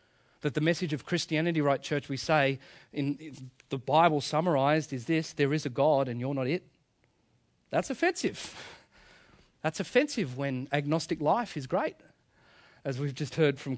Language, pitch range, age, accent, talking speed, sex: English, 140-185 Hz, 40-59, Australian, 160 wpm, male